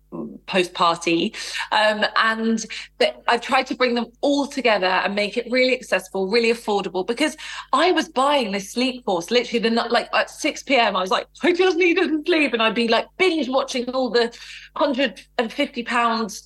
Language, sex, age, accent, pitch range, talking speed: English, female, 30-49, British, 195-265 Hz, 180 wpm